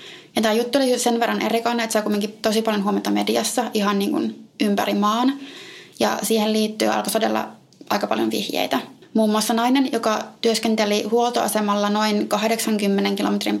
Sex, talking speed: female, 155 wpm